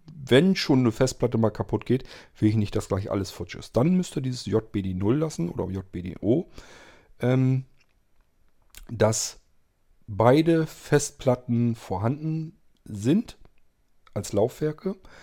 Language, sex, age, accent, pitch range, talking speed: German, male, 40-59, German, 105-135 Hz, 120 wpm